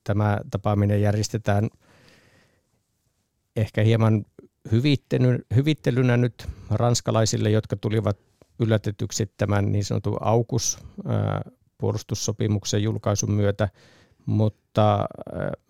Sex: male